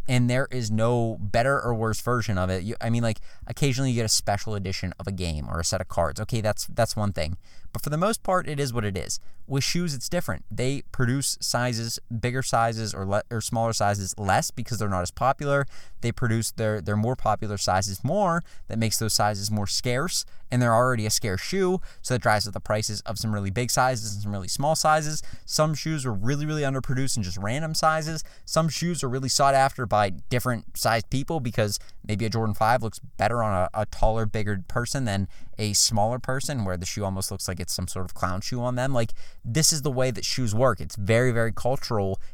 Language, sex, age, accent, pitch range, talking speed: English, male, 20-39, American, 100-130 Hz, 230 wpm